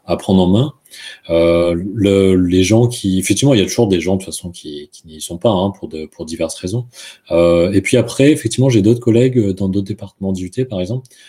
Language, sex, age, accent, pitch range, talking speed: French, male, 30-49, French, 90-110 Hz, 235 wpm